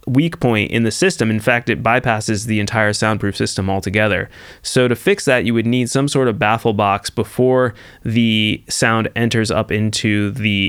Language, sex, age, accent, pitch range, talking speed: English, male, 20-39, American, 105-130 Hz, 185 wpm